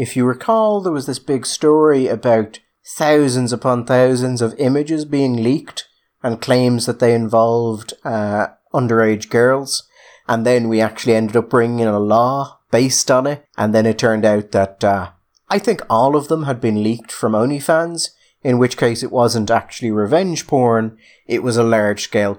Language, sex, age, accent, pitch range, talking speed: English, male, 30-49, British, 110-135 Hz, 175 wpm